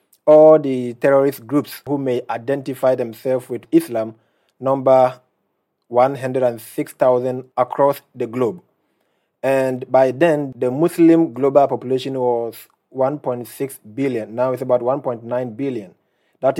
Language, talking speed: English, 110 wpm